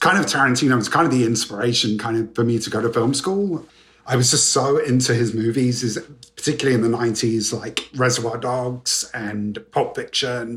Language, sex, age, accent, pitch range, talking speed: English, male, 30-49, British, 115-145 Hz, 195 wpm